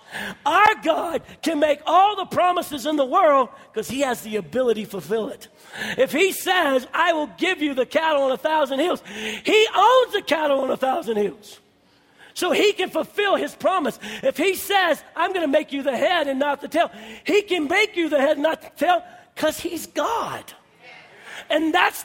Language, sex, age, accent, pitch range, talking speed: English, male, 40-59, American, 225-310 Hz, 200 wpm